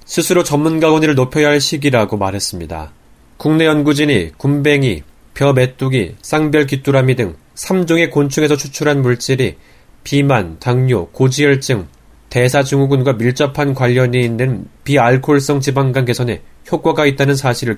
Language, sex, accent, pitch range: Korean, male, native, 120-150 Hz